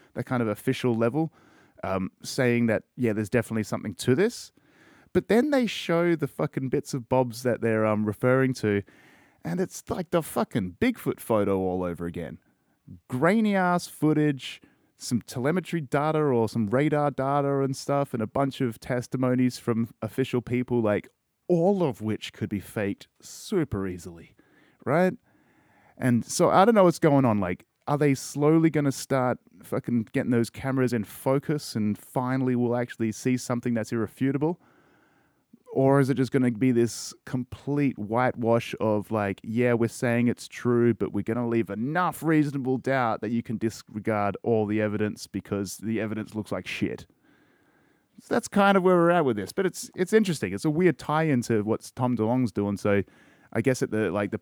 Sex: male